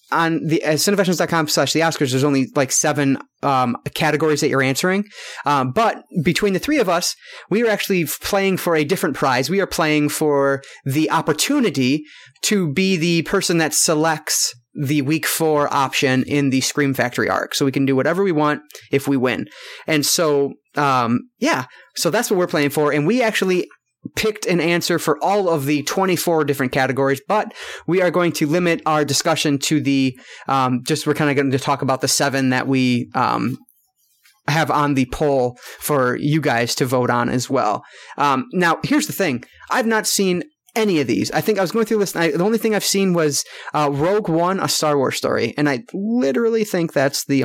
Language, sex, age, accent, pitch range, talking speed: English, male, 30-49, American, 135-180 Hz, 200 wpm